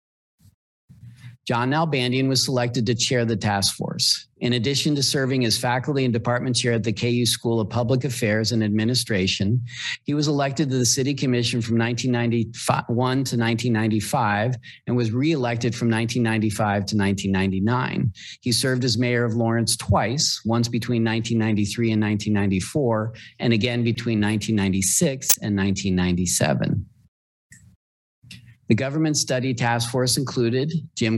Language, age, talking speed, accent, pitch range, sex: English, 40-59, 135 wpm, American, 110-130 Hz, male